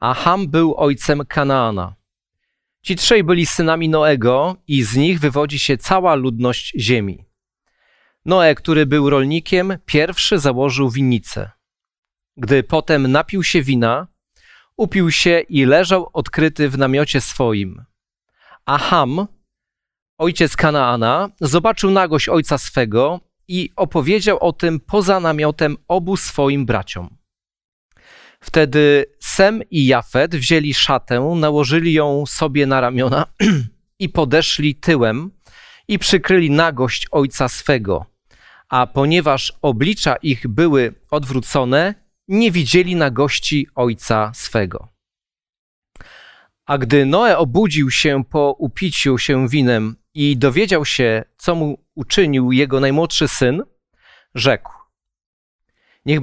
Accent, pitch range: native, 130-170 Hz